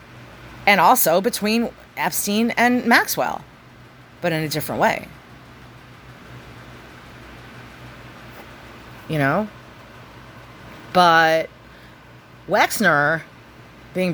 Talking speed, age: 70 wpm, 30-49